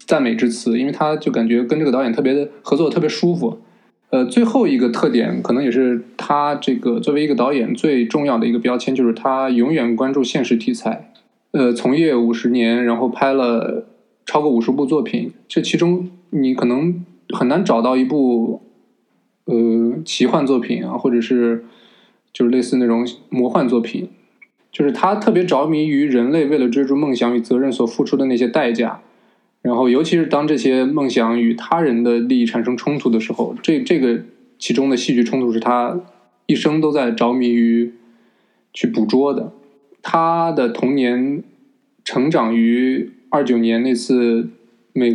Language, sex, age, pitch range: Chinese, male, 20-39, 120-145 Hz